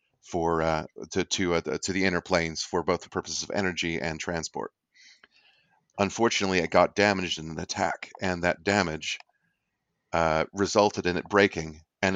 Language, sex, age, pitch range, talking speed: English, male, 30-49, 85-95 Hz, 165 wpm